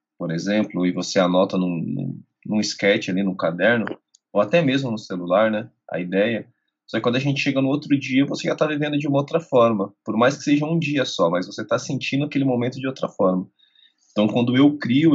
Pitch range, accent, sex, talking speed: 110-140 Hz, Brazilian, male, 225 wpm